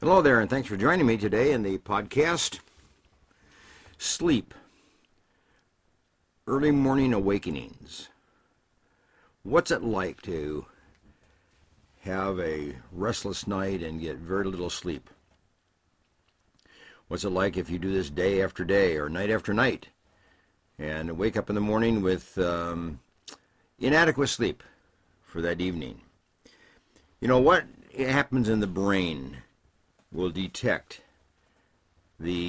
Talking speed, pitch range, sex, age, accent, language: 120 wpm, 90-115 Hz, male, 60-79, American, English